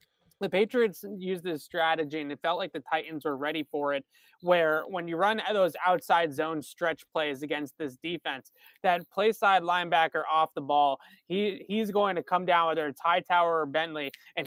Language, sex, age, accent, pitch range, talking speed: English, male, 20-39, American, 155-180 Hz, 185 wpm